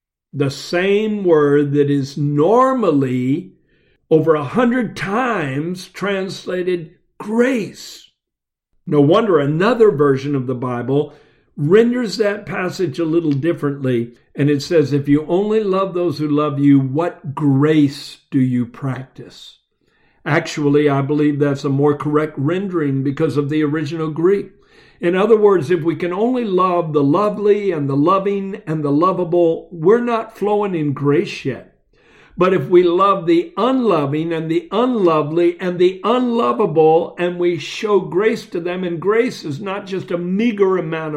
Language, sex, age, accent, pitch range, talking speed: English, male, 60-79, American, 150-205 Hz, 150 wpm